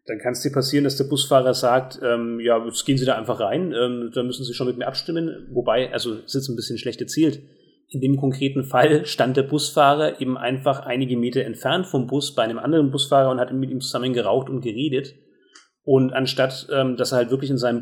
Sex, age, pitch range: male, 30-49, 125-145 Hz